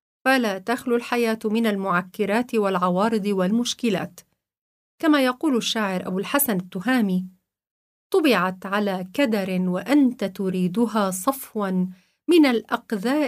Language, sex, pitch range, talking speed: Arabic, female, 195-260 Hz, 95 wpm